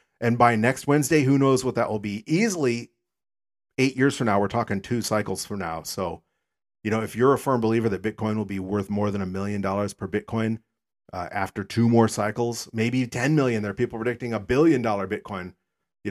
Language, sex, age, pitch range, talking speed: English, male, 40-59, 105-135 Hz, 215 wpm